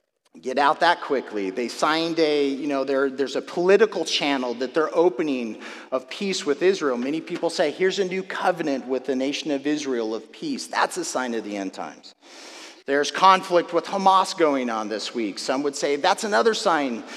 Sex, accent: male, American